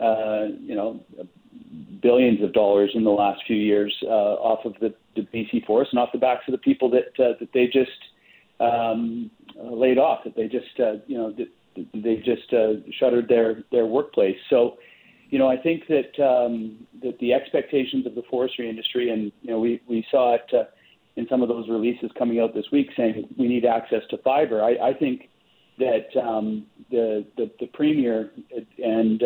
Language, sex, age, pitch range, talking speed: English, male, 40-59, 110-125 Hz, 195 wpm